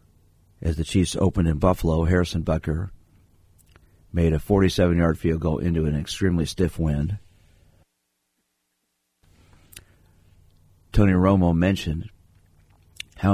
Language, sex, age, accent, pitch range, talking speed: English, male, 50-69, American, 80-95 Hz, 100 wpm